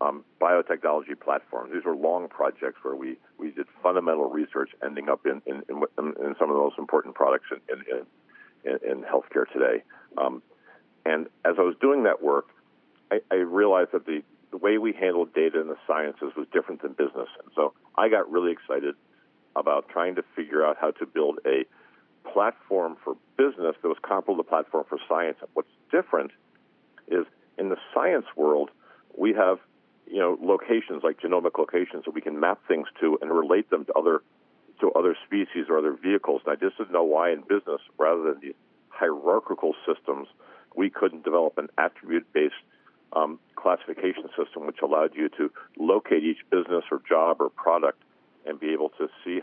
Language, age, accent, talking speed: English, 50-69, American, 185 wpm